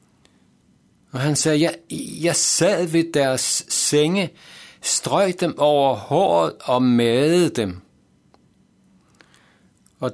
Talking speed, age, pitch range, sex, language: 100 wpm, 60-79, 120-155 Hz, male, Danish